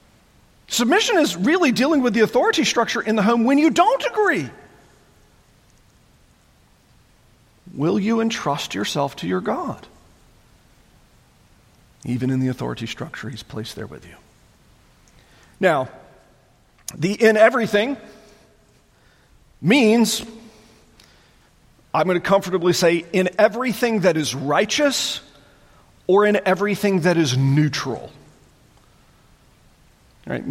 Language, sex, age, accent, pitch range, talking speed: English, male, 40-59, American, 140-200 Hz, 105 wpm